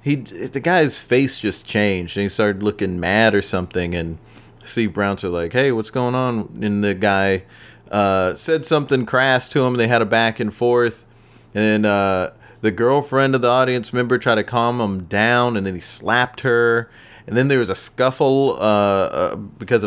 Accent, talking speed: American, 195 wpm